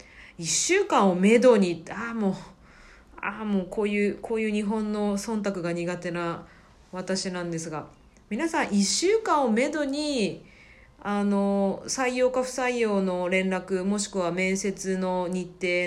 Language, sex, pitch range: Japanese, female, 175-275 Hz